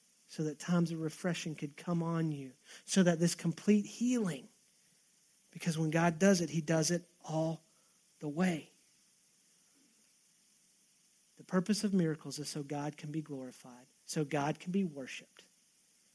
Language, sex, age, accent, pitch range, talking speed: English, male, 40-59, American, 170-220 Hz, 150 wpm